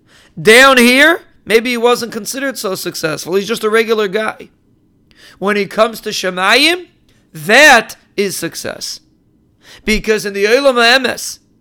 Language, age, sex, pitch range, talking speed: English, 40-59, male, 200-240 Hz, 135 wpm